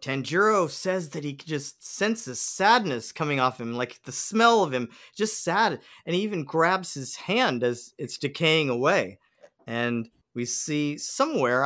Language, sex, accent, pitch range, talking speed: English, male, American, 130-185 Hz, 155 wpm